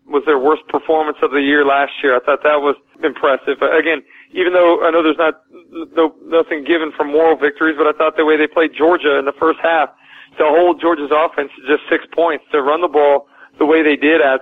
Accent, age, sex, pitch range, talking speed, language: American, 40-59, male, 140-160 Hz, 235 wpm, English